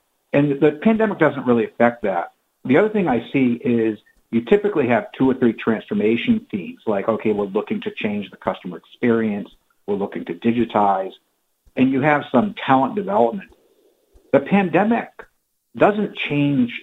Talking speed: 155 wpm